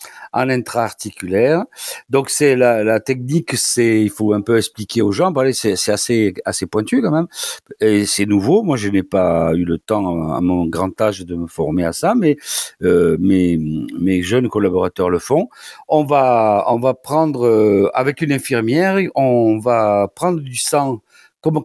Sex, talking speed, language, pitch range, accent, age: male, 180 wpm, French, 105-145 Hz, French, 50-69